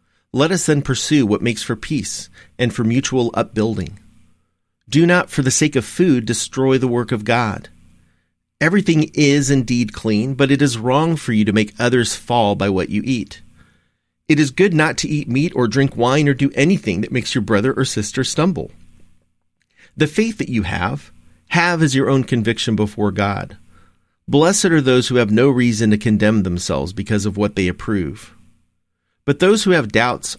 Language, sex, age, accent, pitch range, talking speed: English, male, 40-59, American, 95-130 Hz, 185 wpm